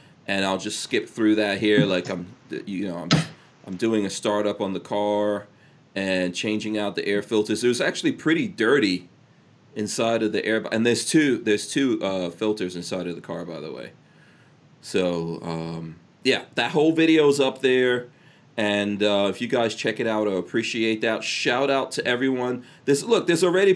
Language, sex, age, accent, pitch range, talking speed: English, male, 30-49, American, 105-140 Hz, 190 wpm